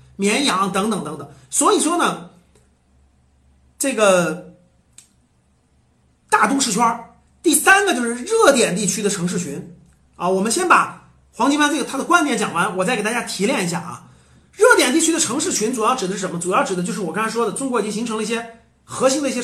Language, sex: Chinese, male